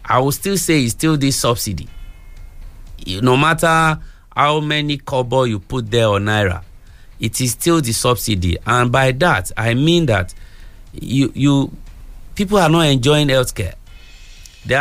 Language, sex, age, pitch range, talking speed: English, male, 50-69, 110-165 Hz, 155 wpm